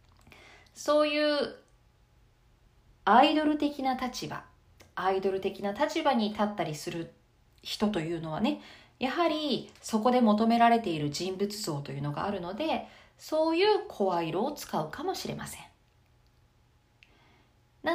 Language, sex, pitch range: Japanese, female, 190-305 Hz